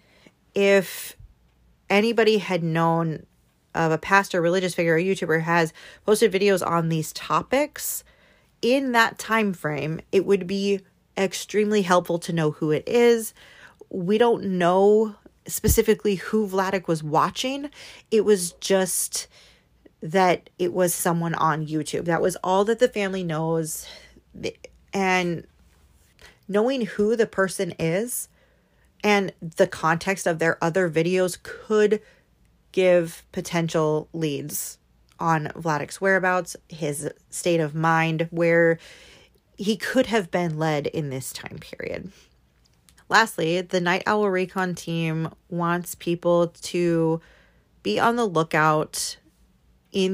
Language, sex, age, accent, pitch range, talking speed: English, female, 30-49, American, 160-195 Hz, 125 wpm